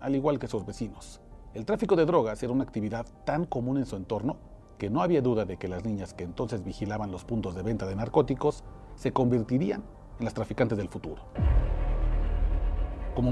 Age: 40-59